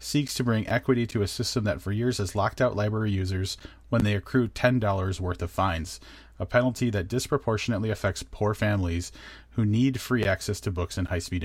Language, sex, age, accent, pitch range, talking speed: English, male, 30-49, American, 90-110 Hz, 195 wpm